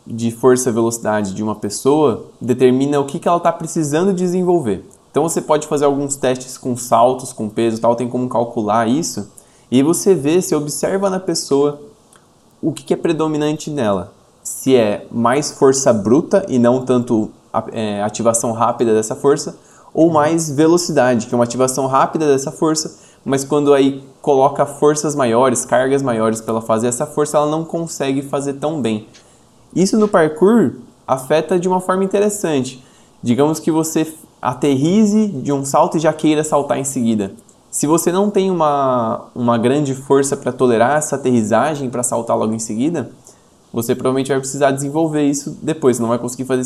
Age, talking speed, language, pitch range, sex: 20-39, 170 wpm, Portuguese, 120-155 Hz, male